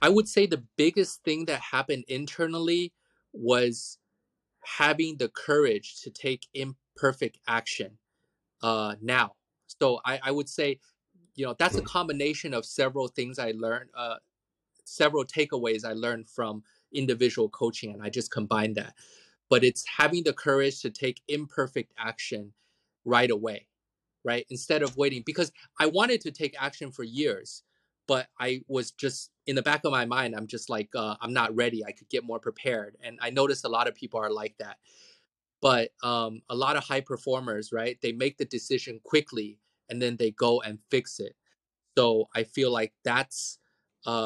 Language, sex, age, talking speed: English, male, 20-39, 175 wpm